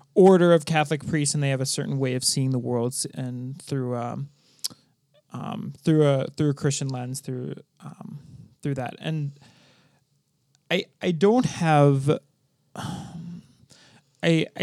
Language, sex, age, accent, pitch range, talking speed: English, male, 20-39, American, 130-150 Hz, 140 wpm